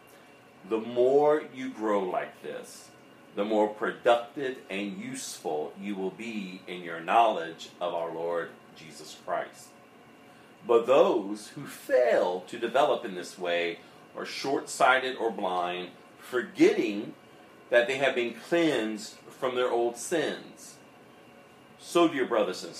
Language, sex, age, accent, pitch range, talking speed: English, male, 40-59, American, 90-120 Hz, 130 wpm